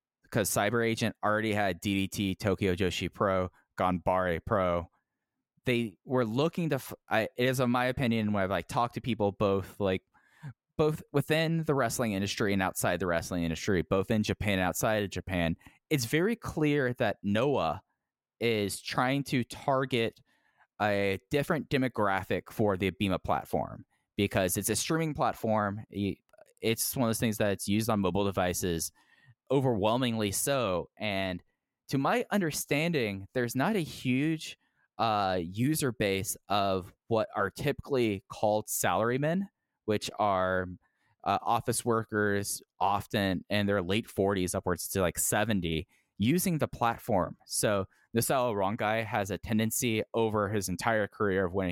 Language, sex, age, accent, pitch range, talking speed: English, male, 10-29, American, 95-125 Hz, 145 wpm